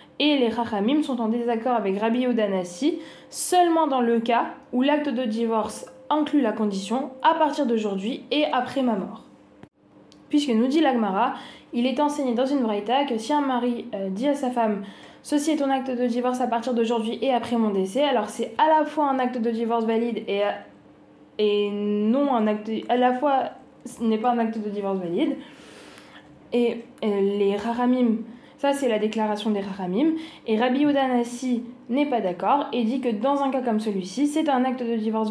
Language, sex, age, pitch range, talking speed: French, female, 20-39, 220-275 Hz, 195 wpm